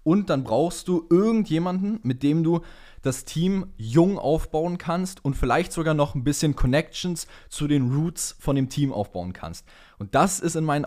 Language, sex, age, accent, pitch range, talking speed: German, male, 20-39, German, 105-155 Hz, 180 wpm